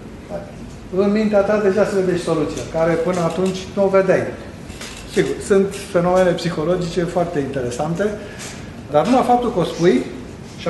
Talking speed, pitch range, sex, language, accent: 150 wpm, 160-200 Hz, male, Romanian, native